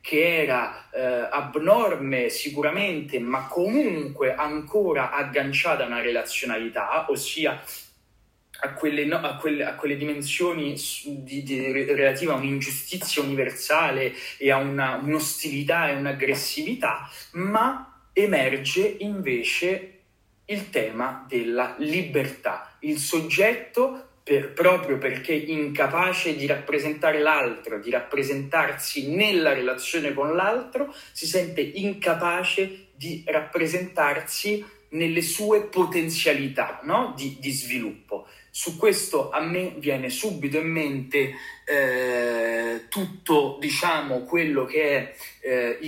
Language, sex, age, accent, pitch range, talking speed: Italian, male, 30-49, native, 135-175 Hz, 100 wpm